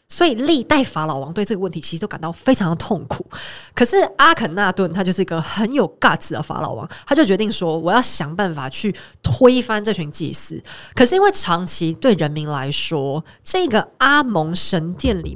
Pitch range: 165-240 Hz